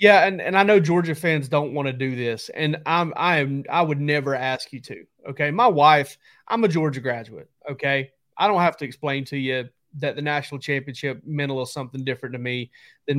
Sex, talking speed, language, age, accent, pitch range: male, 210 wpm, English, 30-49, American, 130-150 Hz